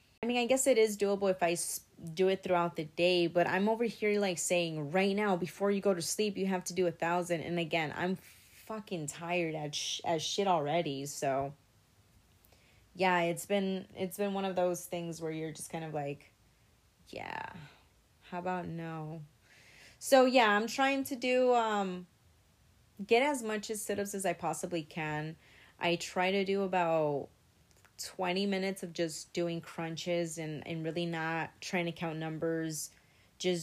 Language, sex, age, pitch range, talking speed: English, female, 30-49, 155-185 Hz, 180 wpm